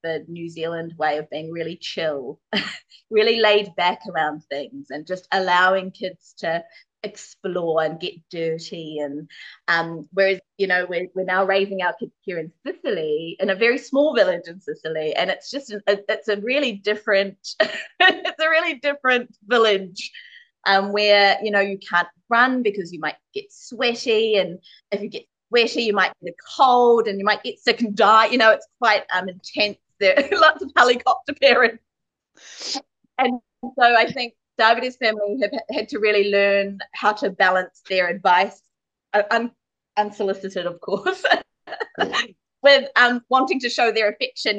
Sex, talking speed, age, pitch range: female, 160 wpm, 20-39, 180-235 Hz